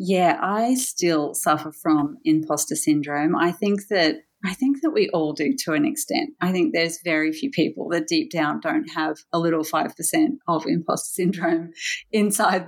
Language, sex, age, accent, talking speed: English, female, 40-59, Australian, 175 wpm